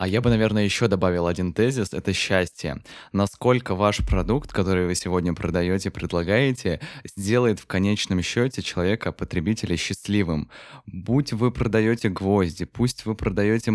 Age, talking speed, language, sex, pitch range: 20-39, 145 wpm, Russian, male, 90-110 Hz